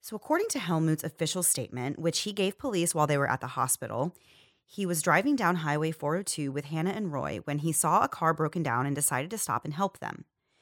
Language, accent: English, American